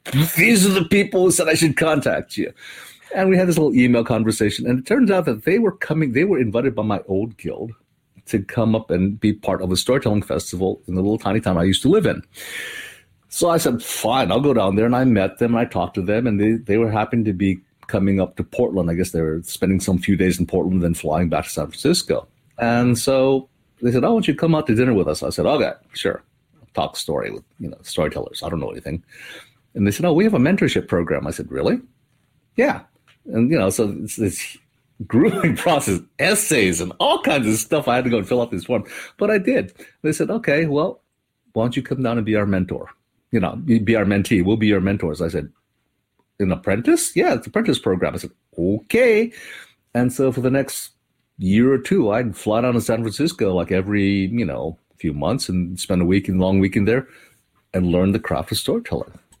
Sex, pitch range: male, 95-135 Hz